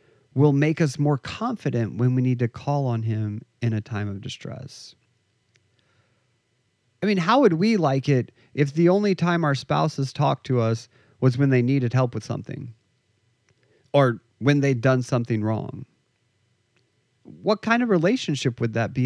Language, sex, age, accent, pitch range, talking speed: English, male, 40-59, American, 120-160 Hz, 165 wpm